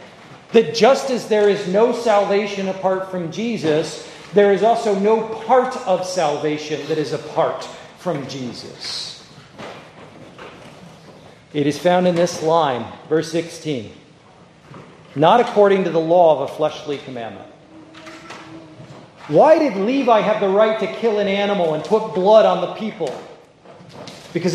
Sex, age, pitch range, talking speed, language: male, 40-59, 155-215 Hz, 135 wpm, English